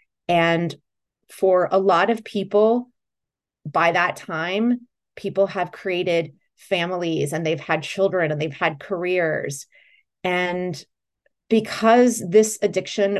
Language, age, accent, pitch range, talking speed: English, 30-49, American, 165-215 Hz, 115 wpm